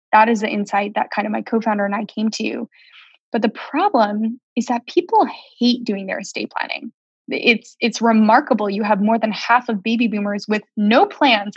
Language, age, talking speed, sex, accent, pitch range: English, 20-39, 195 wpm, female, American, 210-255 Hz